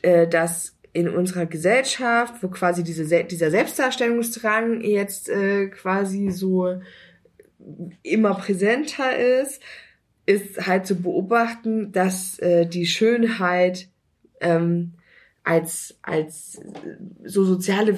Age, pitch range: 20-39, 185-230 Hz